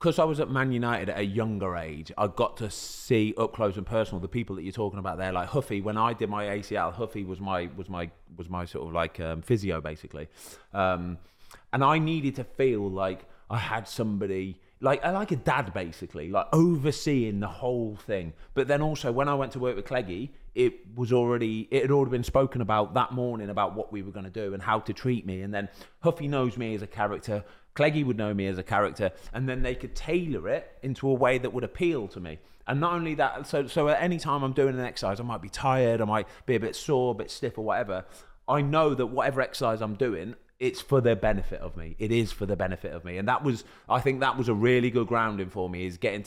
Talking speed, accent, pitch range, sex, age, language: 245 wpm, British, 95-130 Hz, male, 30-49, English